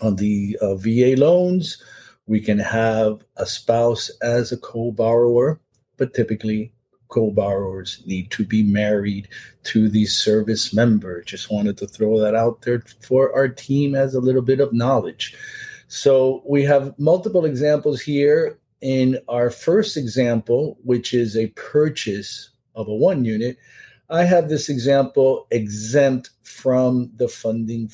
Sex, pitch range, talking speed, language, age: male, 110-135 Hz, 140 wpm, English, 50-69